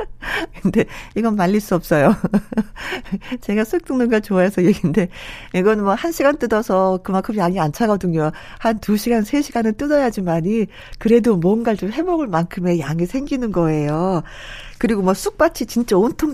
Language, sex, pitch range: Korean, female, 165-225 Hz